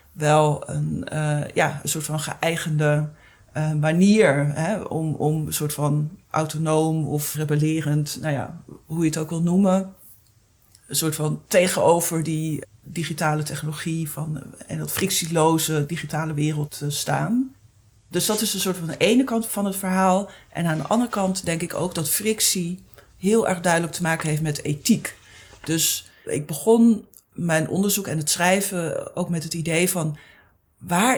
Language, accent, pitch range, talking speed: Dutch, Dutch, 150-180 Hz, 165 wpm